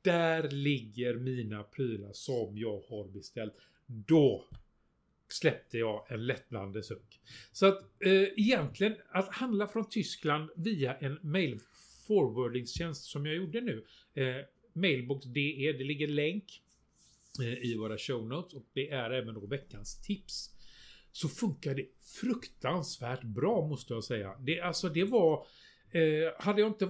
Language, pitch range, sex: Swedish, 130-180 Hz, male